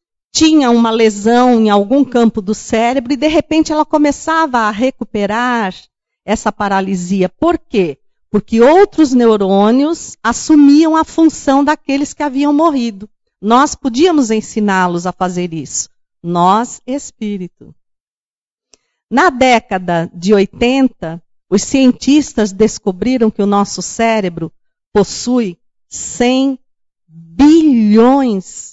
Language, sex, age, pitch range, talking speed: Portuguese, female, 50-69, 210-290 Hz, 105 wpm